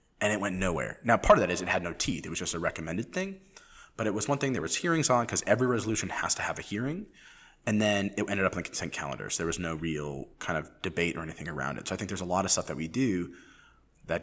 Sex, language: male, English